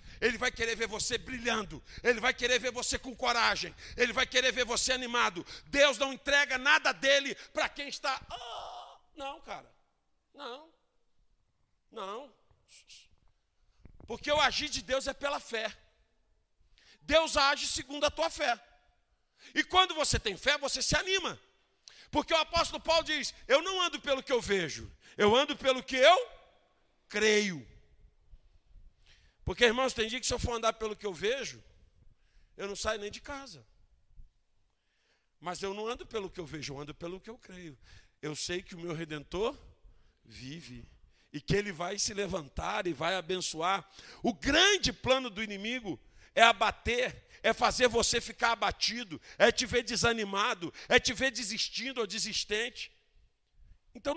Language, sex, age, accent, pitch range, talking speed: Portuguese, male, 50-69, Brazilian, 185-275 Hz, 160 wpm